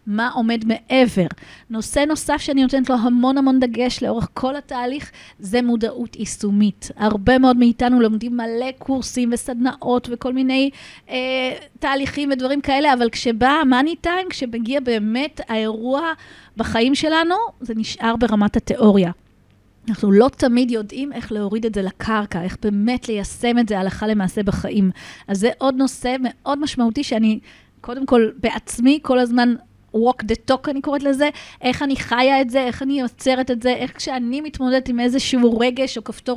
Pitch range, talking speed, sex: 225-265 Hz, 160 wpm, female